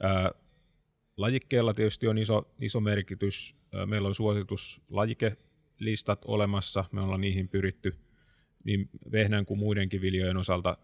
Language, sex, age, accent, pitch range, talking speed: Finnish, male, 30-49, native, 95-105 Hz, 125 wpm